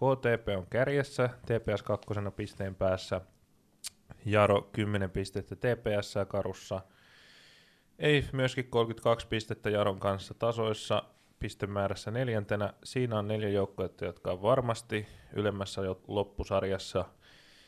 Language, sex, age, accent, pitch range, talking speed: Finnish, male, 20-39, native, 100-115 Hz, 100 wpm